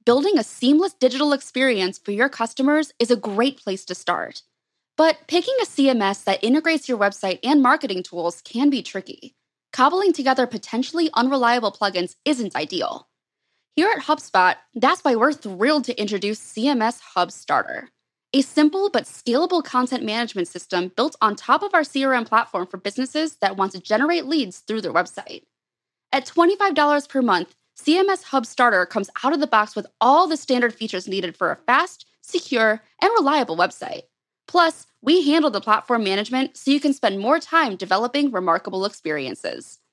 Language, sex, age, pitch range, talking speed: English, female, 20-39, 210-290 Hz, 165 wpm